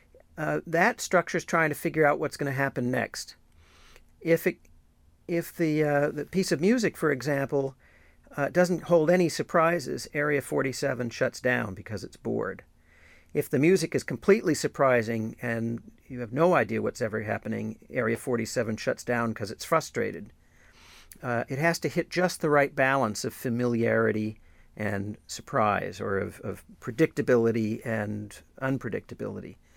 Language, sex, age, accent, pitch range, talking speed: English, male, 50-69, American, 120-170 Hz, 155 wpm